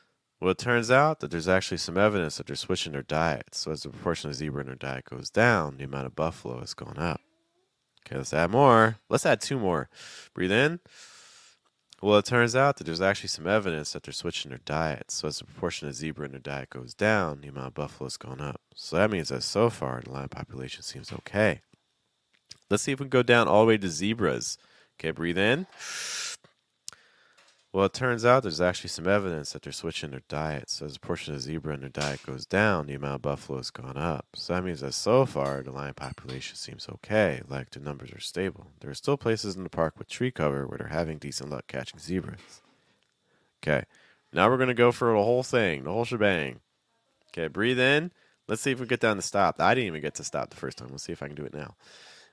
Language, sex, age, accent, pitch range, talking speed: English, male, 30-49, American, 70-110 Hz, 235 wpm